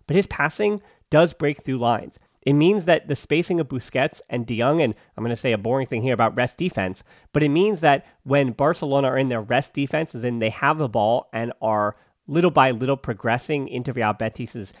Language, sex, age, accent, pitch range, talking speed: English, male, 30-49, American, 115-145 Hz, 220 wpm